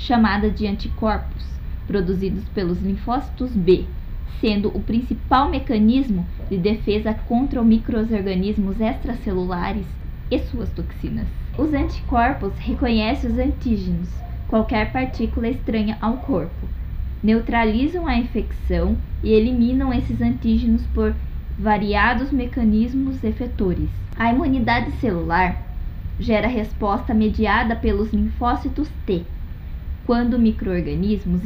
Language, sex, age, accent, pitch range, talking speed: Portuguese, female, 20-39, Brazilian, 185-240 Hz, 95 wpm